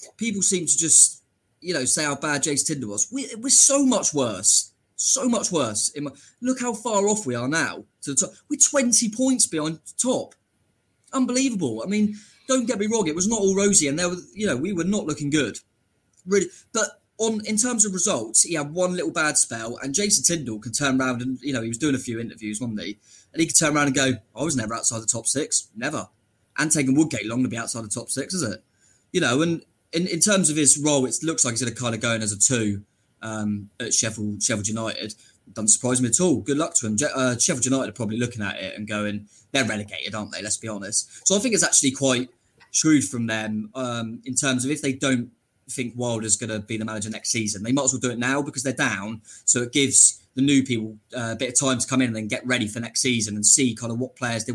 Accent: British